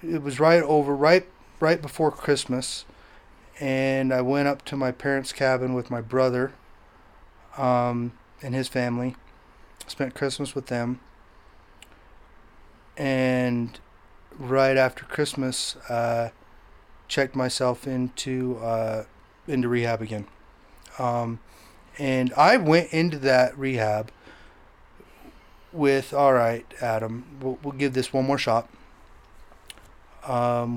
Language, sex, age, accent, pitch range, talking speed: English, male, 30-49, American, 115-140 Hz, 115 wpm